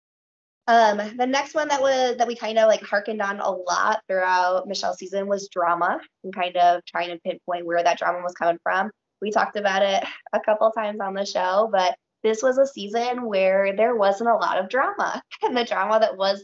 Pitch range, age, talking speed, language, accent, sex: 185-230 Hz, 20-39, 215 wpm, English, American, female